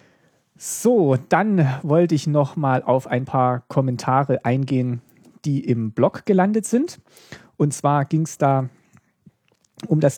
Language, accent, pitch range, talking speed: German, German, 130-155 Hz, 130 wpm